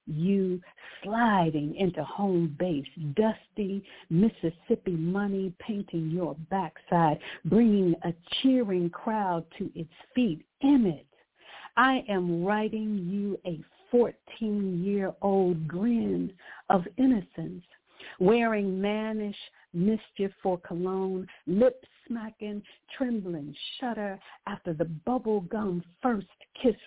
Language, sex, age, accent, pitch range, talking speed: English, female, 60-79, American, 175-215 Hz, 100 wpm